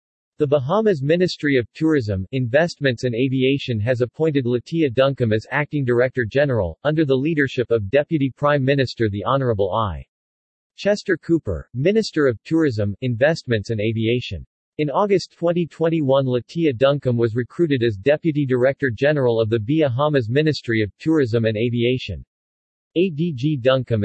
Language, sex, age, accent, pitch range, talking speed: English, male, 40-59, American, 115-150 Hz, 130 wpm